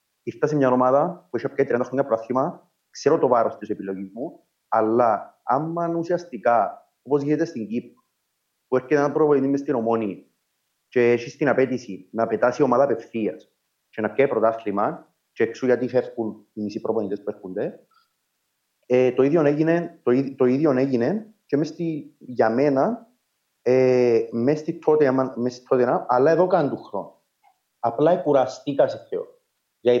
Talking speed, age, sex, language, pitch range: 150 wpm, 30-49, male, Greek, 115-150 Hz